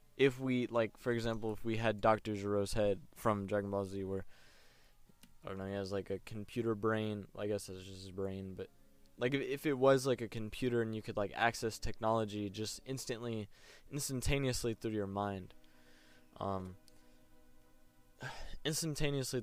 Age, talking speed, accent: 20-39, 165 wpm, American